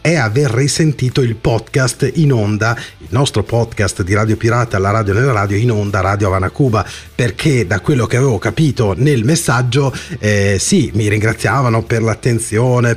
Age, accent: 30-49, native